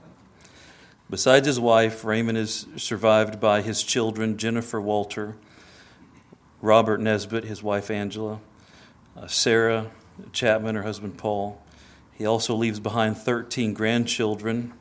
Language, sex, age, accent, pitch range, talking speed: English, male, 40-59, American, 105-115 Hz, 115 wpm